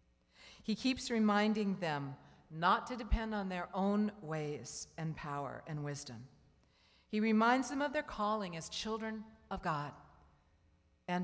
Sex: female